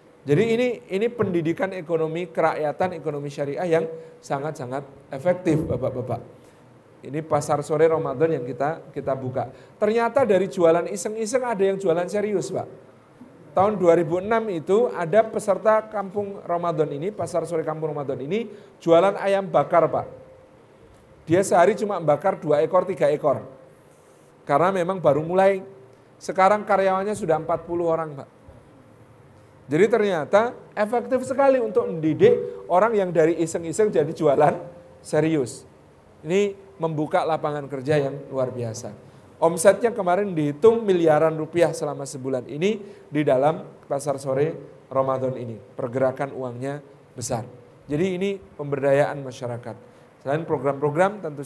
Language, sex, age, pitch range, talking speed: Indonesian, male, 40-59, 140-190 Hz, 125 wpm